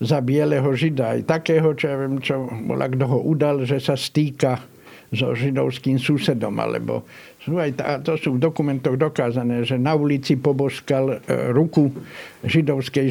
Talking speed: 145 wpm